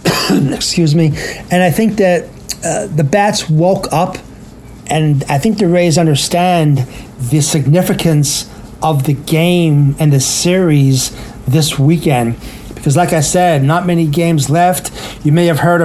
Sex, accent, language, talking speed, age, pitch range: male, American, English, 150 wpm, 40-59, 150-175 Hz